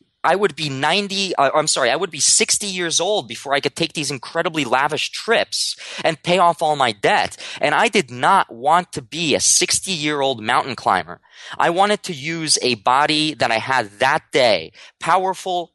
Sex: male